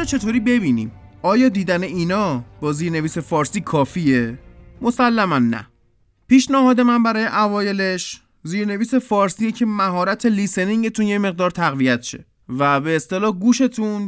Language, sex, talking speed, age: Persian, male, 120 wpm, 20-39